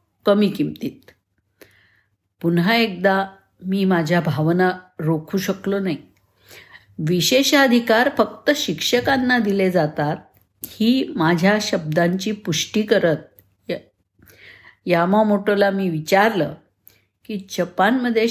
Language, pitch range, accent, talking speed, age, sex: Marathi, 160-215 Hz, native, 90 wpm, 50-69, female